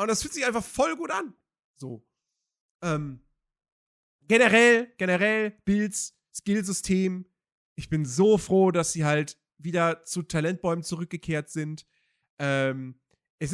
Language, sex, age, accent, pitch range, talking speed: German, male, 40-59, German, 155-215 Hz, 125 wpm